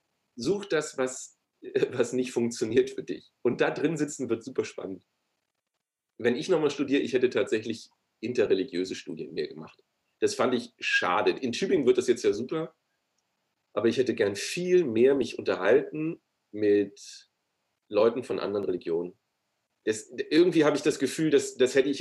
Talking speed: 160 wpm